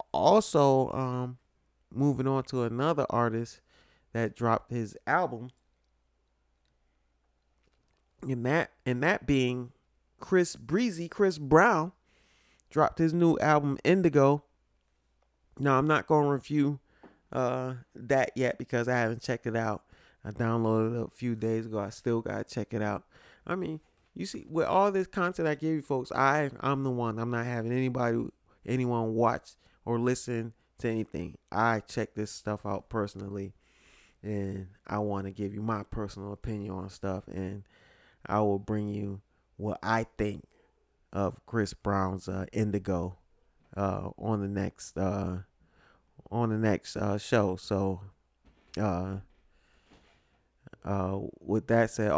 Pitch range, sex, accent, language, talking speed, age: 100-130 Hz, male, American, English, 145 wpm, 30-49